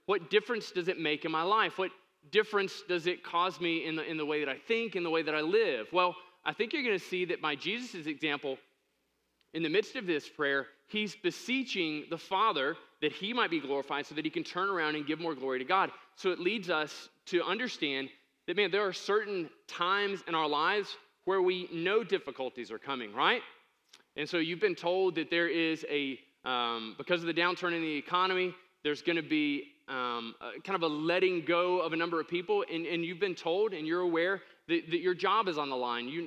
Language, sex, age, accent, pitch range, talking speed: English, male, 20-39, American, 160-205 Hz, 230 wpm